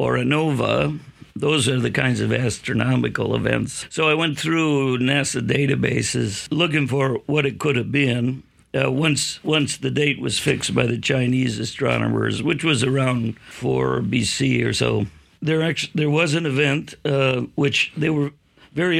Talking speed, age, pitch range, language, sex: 165 wpm, 60-79, 115-140 Hz, English, male